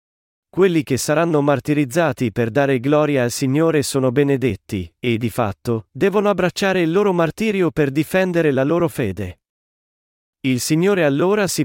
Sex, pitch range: male, 125-155 Hz